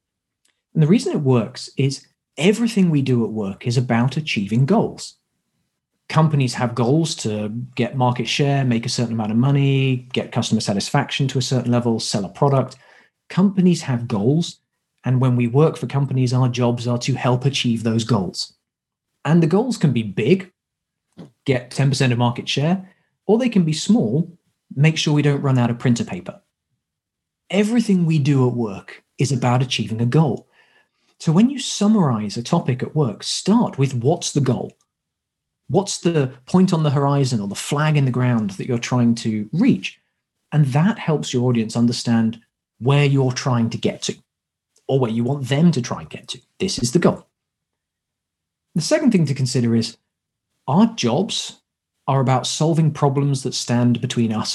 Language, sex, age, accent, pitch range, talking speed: English, male, 40-59, British, 120-155 Hz, 180 wpm